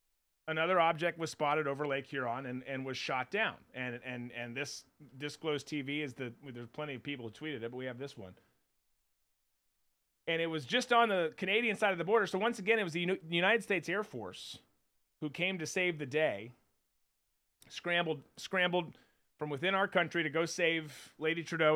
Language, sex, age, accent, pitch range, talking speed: English, male, 30-49, American, 130-175 Hz, 195 wpm